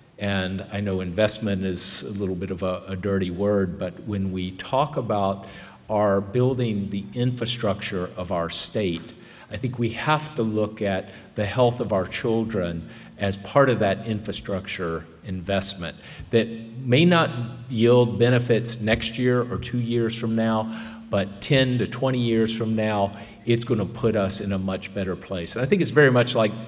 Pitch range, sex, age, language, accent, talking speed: 95-120 Hz, male, 50-69, English, American, 180 wpm